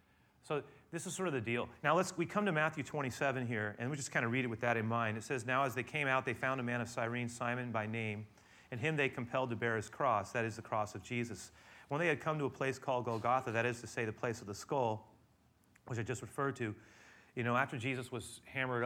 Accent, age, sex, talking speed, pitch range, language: American, 30-49, male, 270 wpm, 110-125 Hz, English